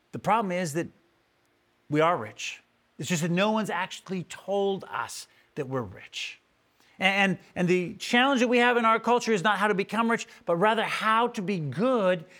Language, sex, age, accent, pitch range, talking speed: English, male, 40-59, American, 145-195 Hz, 195 wpm